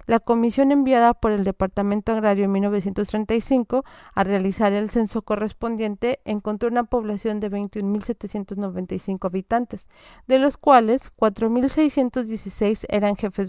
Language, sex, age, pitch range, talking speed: Spanish, female, 40-59, 205-240 Hz, 115 wpm